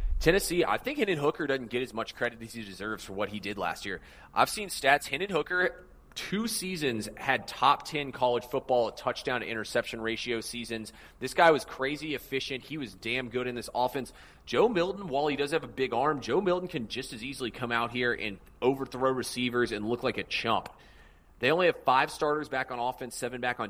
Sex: male